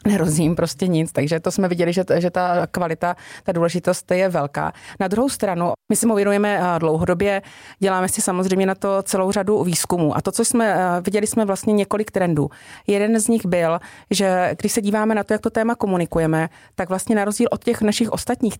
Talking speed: 195 wpm